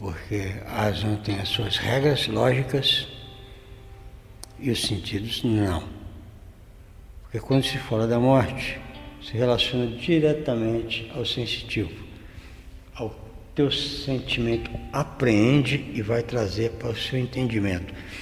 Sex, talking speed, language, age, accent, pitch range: male, 110 wpm, Portuguese, 60-79, Brazilian, 100-120 Hz